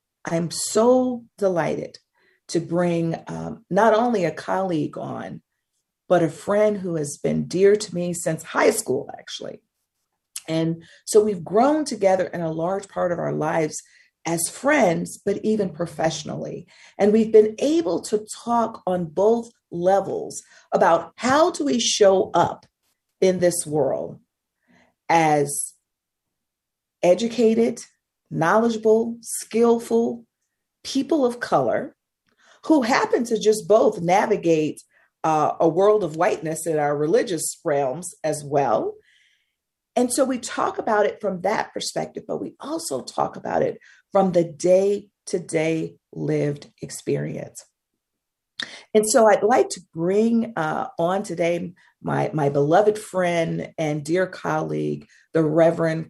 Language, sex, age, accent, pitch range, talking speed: English, female, 40-59, American, 160-220 Hz, 130 wpm